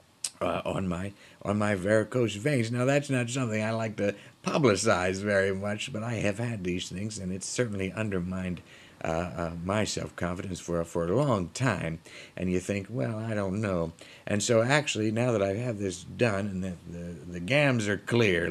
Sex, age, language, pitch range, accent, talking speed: male, 50-69, English, 85-110 Hz, American, 200 wpm